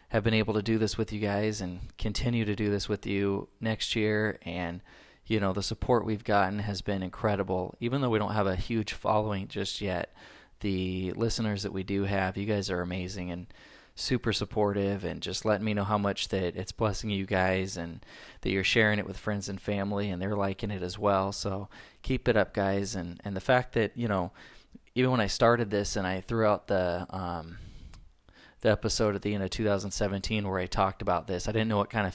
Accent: American